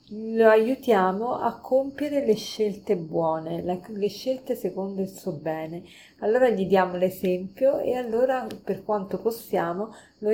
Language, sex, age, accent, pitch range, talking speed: Italian, female, 30-49, native, 185-230 Hz, 135 wpm